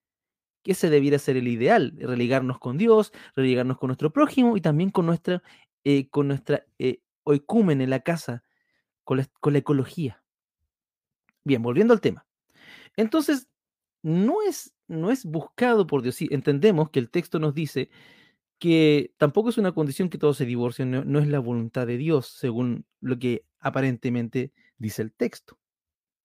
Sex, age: male, 30-49